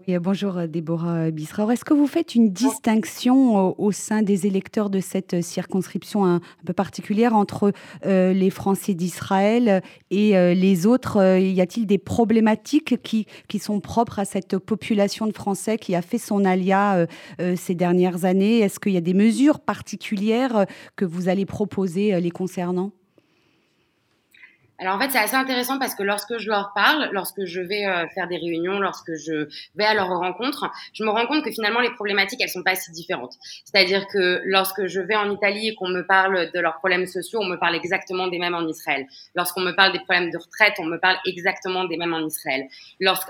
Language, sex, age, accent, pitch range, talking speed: French, female, 30-49, French, 180-210 Hz, 190 wpm